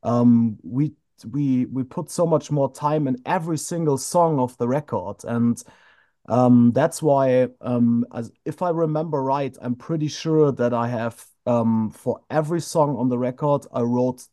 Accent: German